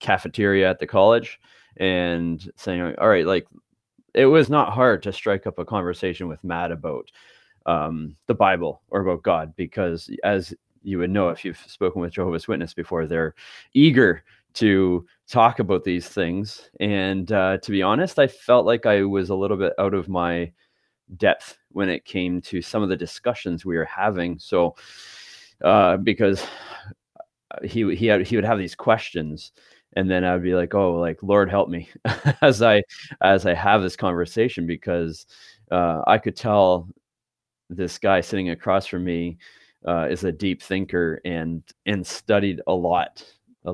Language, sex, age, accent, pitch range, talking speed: English, male, 30-49, American, 85-100 Hz, 170 wpm